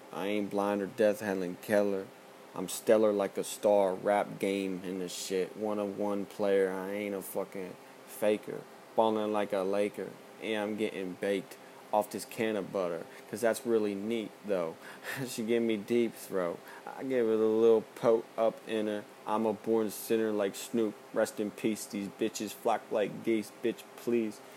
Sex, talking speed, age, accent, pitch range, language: male, 180 wpm, 20-39, American, 105-115 Hz, English